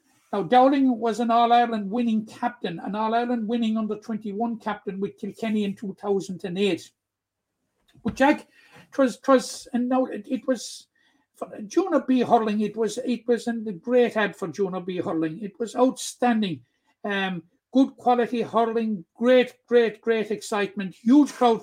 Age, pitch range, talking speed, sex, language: 60-79, 200-240 Hz, 155 wpm, male, English